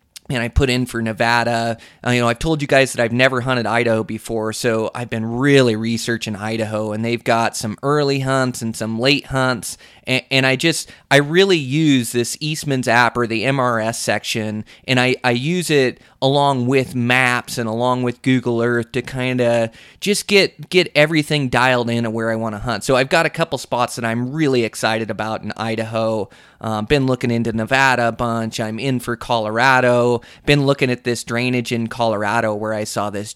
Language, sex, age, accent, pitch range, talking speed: English, male, 20-39, American, 115-135 Hz, 200 wpm